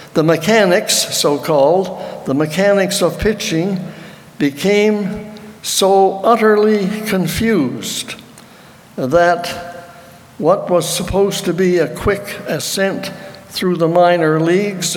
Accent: American